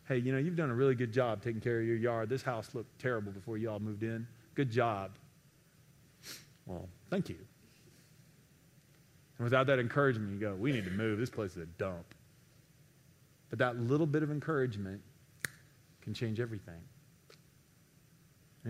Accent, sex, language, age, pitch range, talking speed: American, male, English, 40-59, 115-145 Hz, 170 wpm